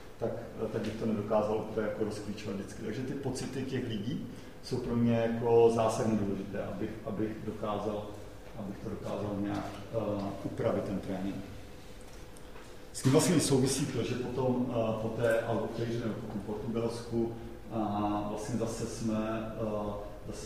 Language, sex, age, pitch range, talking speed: Czech, male, 40-59, 105-115 Hz, 140 wpm